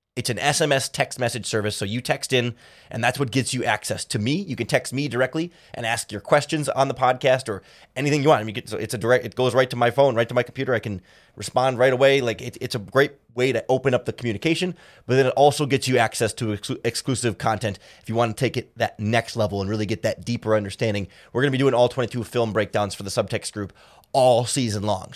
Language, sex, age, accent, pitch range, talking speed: English, male, 30-49, American, 105-135 Hz, 260 wpm